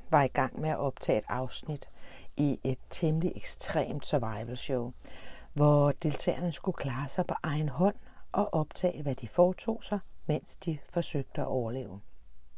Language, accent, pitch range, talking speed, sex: Danish, native, 105-155 Hz, 155 wpm, female